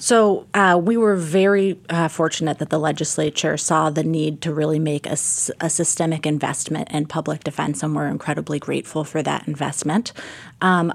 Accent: American